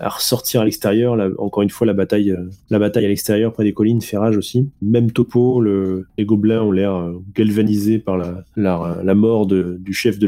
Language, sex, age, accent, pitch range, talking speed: French, male, 20-39, French, 95-120 Hz, 230 wpm